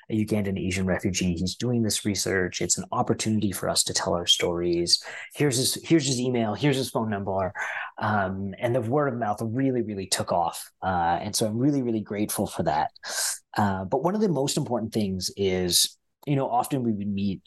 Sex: male